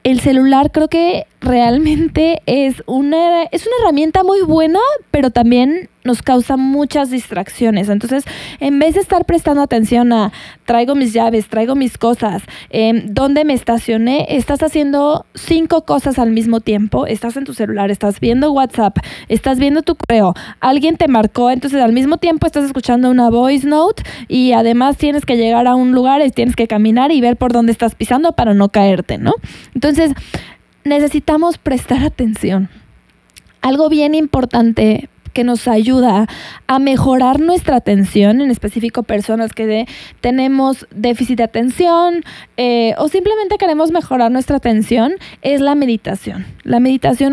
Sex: female